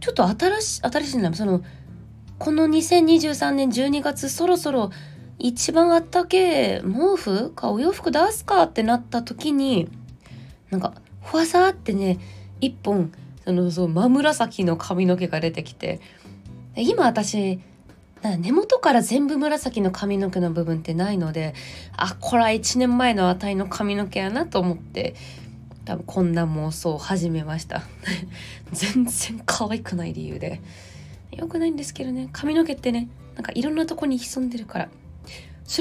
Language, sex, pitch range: Japanese, female, 170-275 Hz